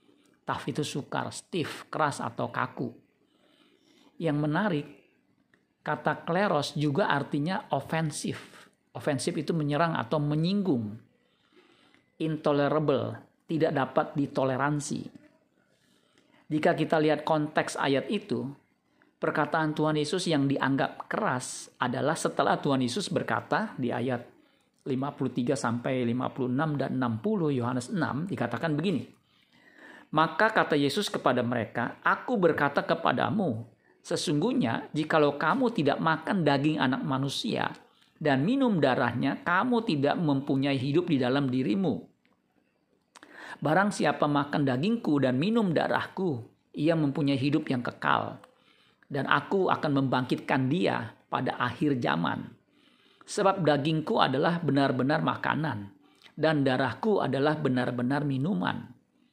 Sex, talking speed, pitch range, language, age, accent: male, 105 wpm, 135-170 Hz, Indonesian, 50-69, native